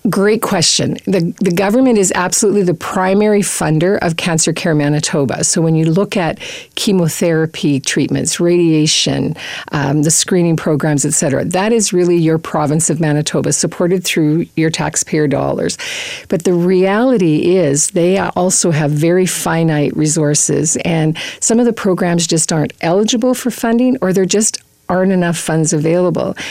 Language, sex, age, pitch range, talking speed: English, female, 50-69, 155-190 Hz, 150 wpm